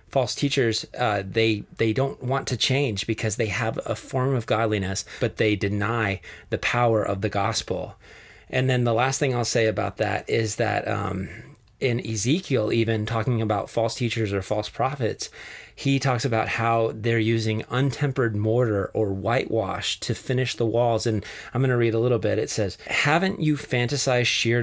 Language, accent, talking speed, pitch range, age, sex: English, American, 180 wpm, 110-130 Hz, 30-49, male